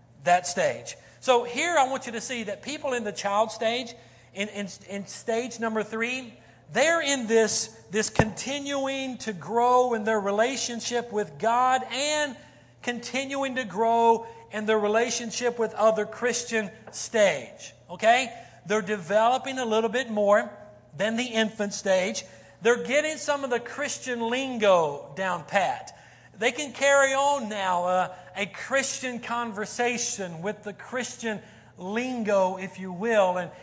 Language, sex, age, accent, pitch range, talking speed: English, male, 40-59, American, 200-245 Hz, 150 wpm